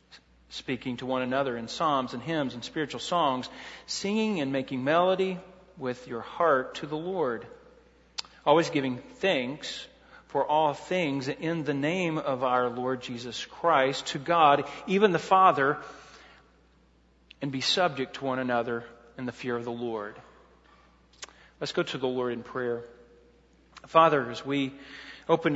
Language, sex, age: English, male, 40-59